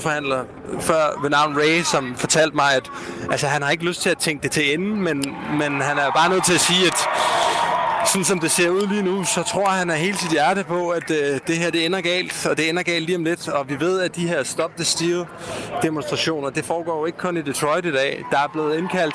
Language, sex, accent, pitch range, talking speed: Danish, male, native, 145-175 Hz, 255 wpm